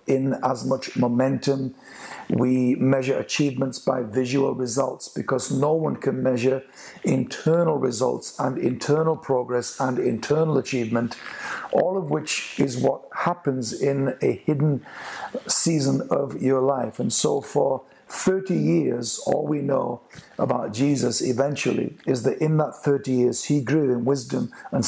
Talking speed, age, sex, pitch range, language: 140 wpm, 50-69, male, 125-145 Hz, English